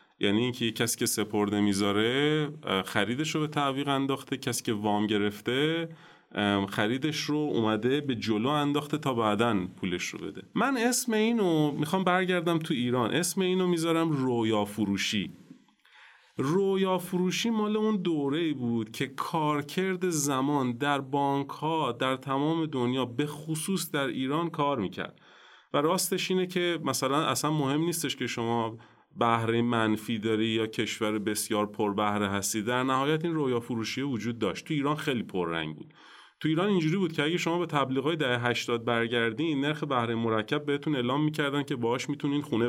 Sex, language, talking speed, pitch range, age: male, Persian, 155 wpm, 110-155 Hz, 30-49